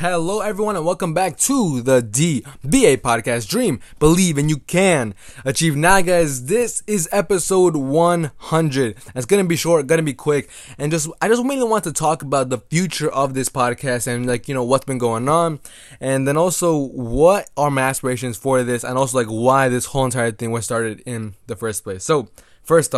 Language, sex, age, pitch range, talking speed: English, male, 20-39, 120-150 Hz, 200 wpm